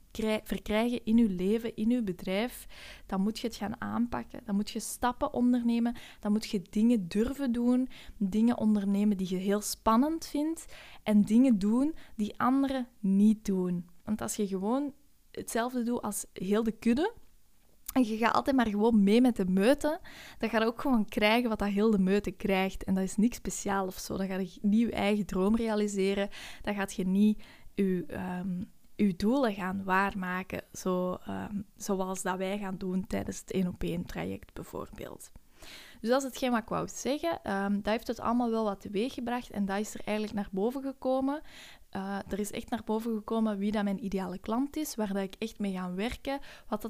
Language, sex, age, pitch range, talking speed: Dutch, female, 20-39, 195-240 Hz, 185 wpm